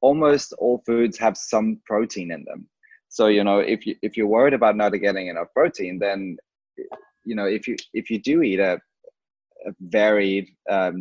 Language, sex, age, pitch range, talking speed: English, male, 20-39, 95-115 Hz, 185 wpm